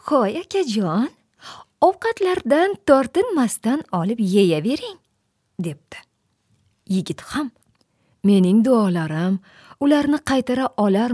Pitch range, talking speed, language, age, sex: 200-325 Hz, 110 wpm, English, 30-49, female